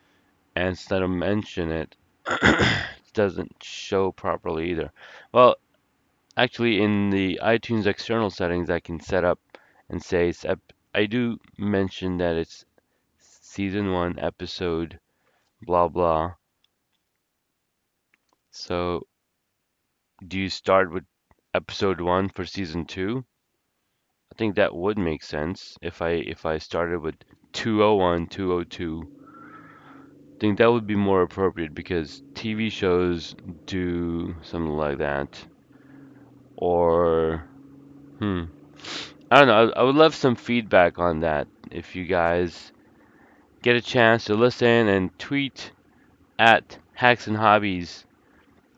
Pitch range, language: 85-110 Hz, English